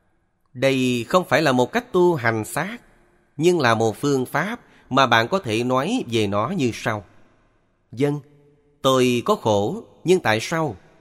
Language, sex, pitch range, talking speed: Vietnamese, male, 105-130 Hz, 165 wpm